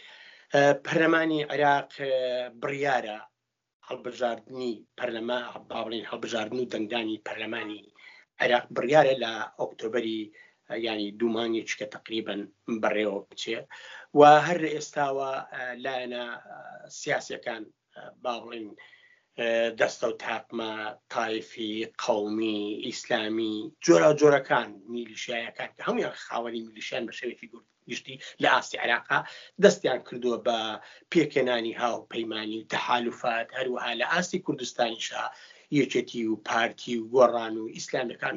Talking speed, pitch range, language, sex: 100 wpm, 110-135 Hz, Persian, male